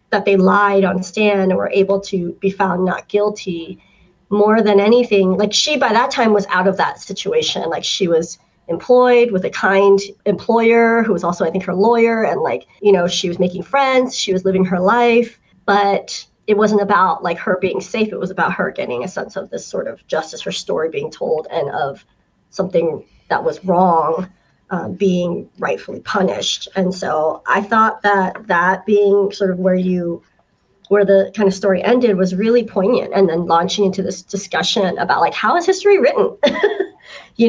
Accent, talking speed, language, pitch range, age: American, 195 wpm, English, 190-235 Hz, 30-49